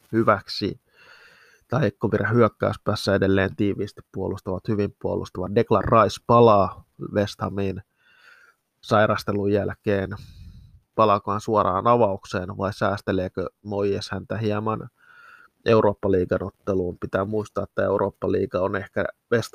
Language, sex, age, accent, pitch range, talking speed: Finnish, male, 20-39, native, 100-115 Hz, 95 wpm